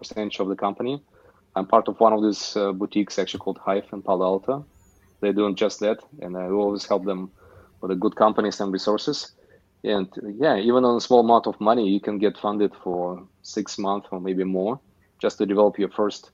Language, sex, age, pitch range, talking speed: English, male, 20-39, 95-105 Hz, 215 wpm